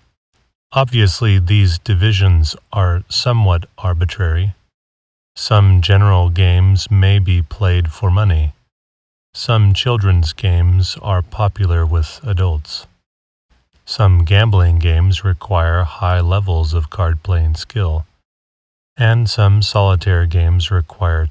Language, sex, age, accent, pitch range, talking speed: English, male, 30-49, American, 85-100 Hz, 100 wpm